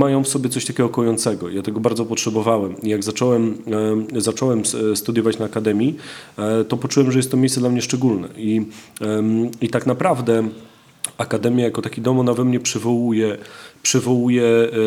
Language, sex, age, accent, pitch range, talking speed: Polish, male, 30-49, native, 110-125 Hz, 150 wpm